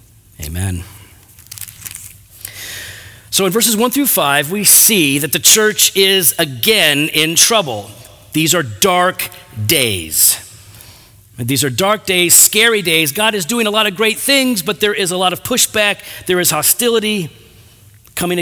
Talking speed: 145 wpm